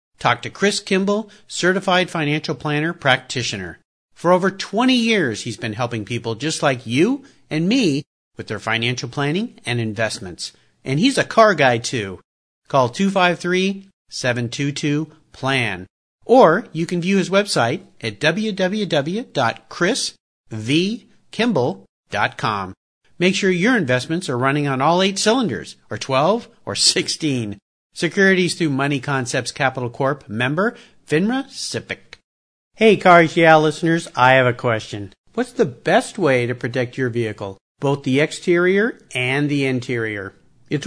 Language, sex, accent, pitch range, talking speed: English, male, American, 125-190 Hz, 130 wpm